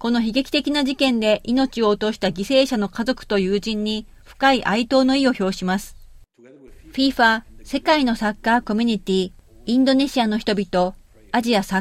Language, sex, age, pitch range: Japanese, female, 40-59, 200-260 Hz